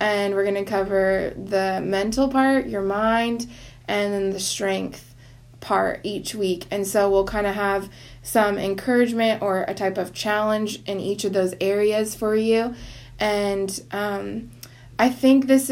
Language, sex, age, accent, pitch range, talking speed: English, female, 20-39, American, 195-225 Hz, 155 wpm